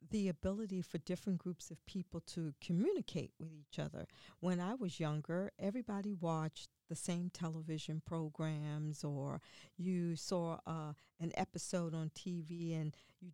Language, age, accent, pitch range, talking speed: English, 50-69, American, 160-195 Hz, 145 wpm